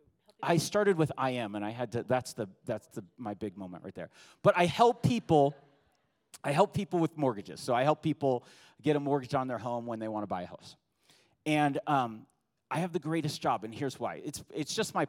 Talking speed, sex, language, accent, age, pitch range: 230 wpm, male, English, American, 30-49, 120-160 Hz